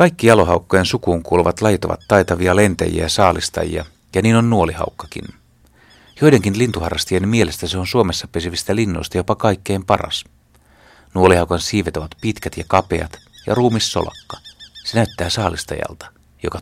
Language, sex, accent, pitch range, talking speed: Finnish, male, native, 85-105 Hz, 135 wpm